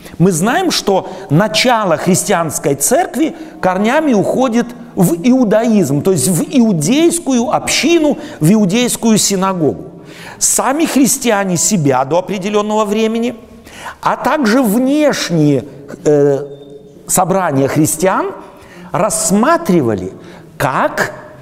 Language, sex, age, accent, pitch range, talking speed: Russian, male, 50-69, native, 165-235 Hz, 90 wpm